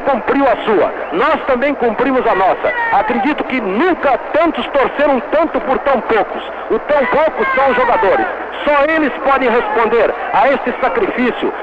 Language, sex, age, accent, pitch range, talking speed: Portuguese, male, 60-79, Brazilian, 230-280 Hz, 155 wpm